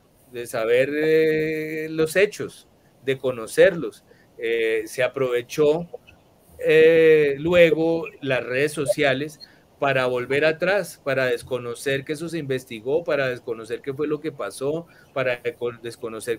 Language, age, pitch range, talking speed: Spanish, 30-49, 130-165 Hz, 120 wpm